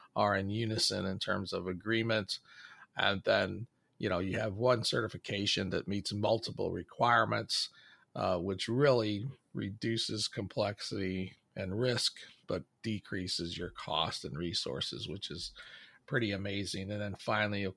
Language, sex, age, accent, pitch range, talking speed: English, male, 50-69, American, 105-130 Hz, 135 wpm